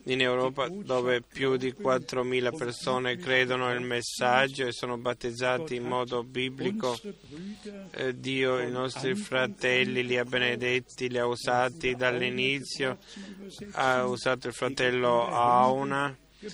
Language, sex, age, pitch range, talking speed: Italian, male, 20-39, 125-140 Hz, 120 wpm